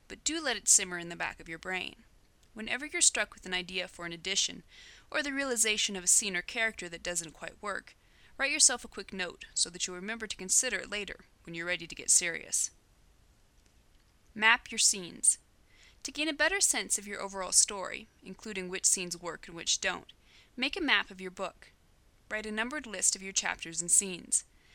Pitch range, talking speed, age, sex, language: 180-235 Hz, 205 wpm, 30-49, female, English